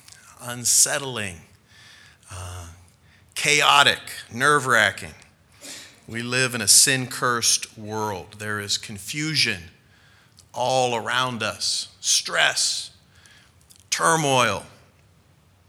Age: 40-59